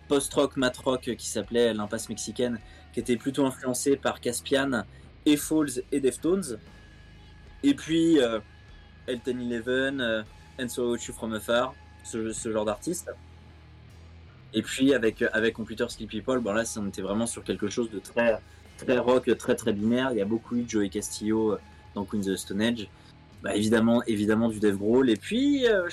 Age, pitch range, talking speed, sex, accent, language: 20-39, 100-125 Hz, 175 wpm, male, French, French